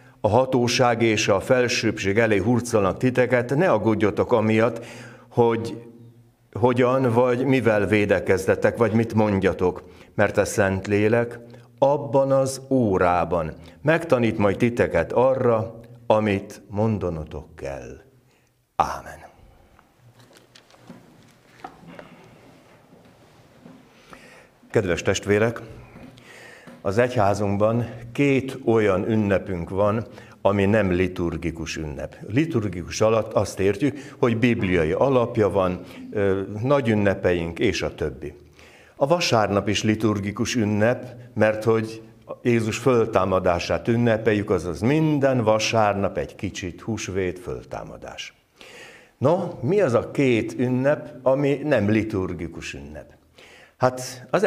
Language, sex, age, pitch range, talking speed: Hungarian, male, 60-79, 95-125 Hz, 95 wpm